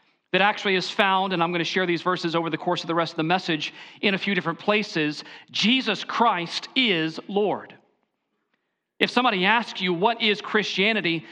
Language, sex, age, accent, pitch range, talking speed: English, male, 40-59, American, 175-220 Hz, 190 wpm